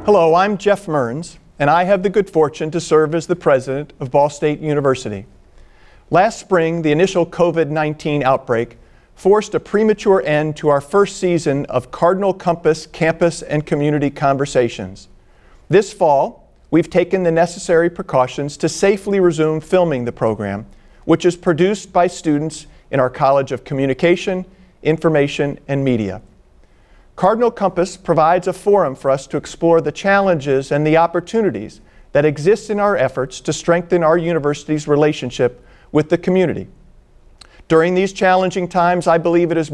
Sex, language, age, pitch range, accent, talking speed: male, English, 50-69, 140-180 Hz, American, 155 wpm